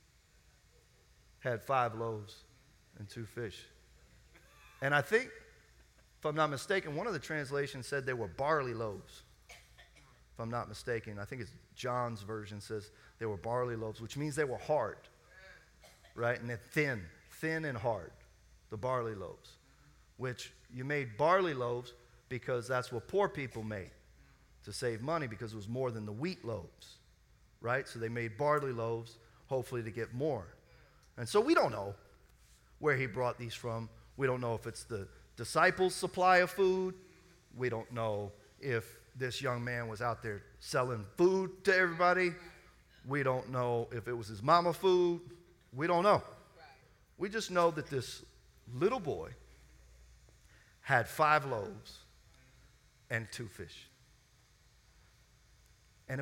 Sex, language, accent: male, English, American